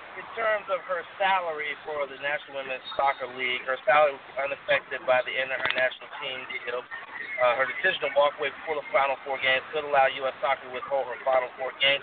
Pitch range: 125-195 Hz